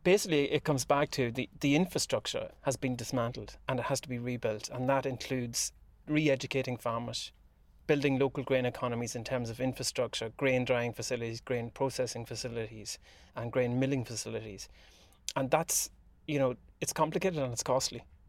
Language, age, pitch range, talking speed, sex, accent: English, 30-49, 120-140 Hz, 160 wpm, male, Irish